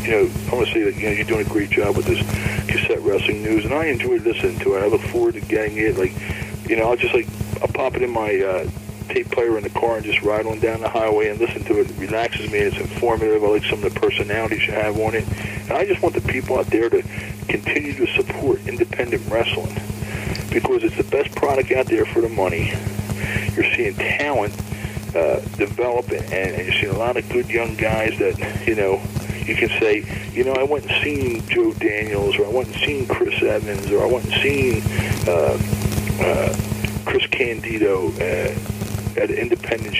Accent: American